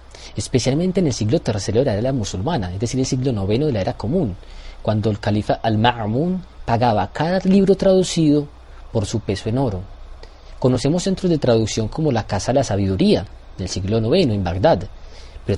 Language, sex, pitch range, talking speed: Spanish, male, 95-135 Hz, 180 wpm